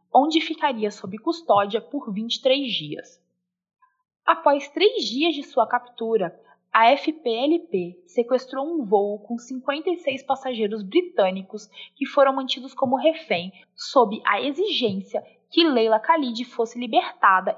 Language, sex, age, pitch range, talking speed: Portuguese, female, 20-39, 210-295 Hz, 120 wpm